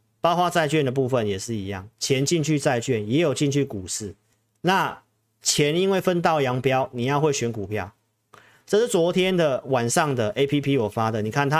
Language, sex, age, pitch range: Chinese, male, 40-59, 110-160 Hz